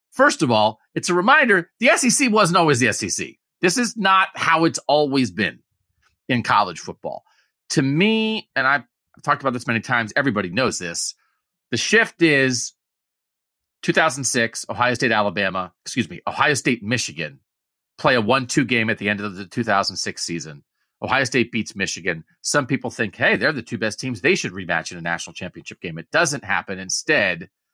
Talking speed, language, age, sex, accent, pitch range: 175 wpm, English, 40-59, male, American, 110-180 Hz